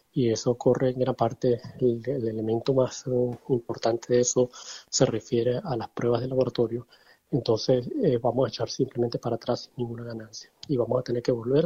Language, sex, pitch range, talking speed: Spanish, male, 115-130 Hz, 195 wpm